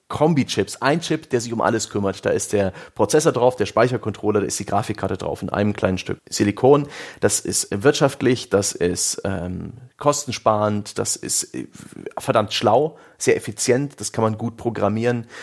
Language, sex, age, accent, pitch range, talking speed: German, male, 30-49, German, 105-140 Hz, 170 wpm